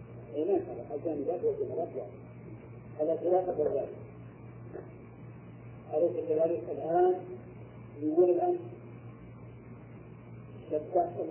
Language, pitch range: Arabic, 145-190 Hz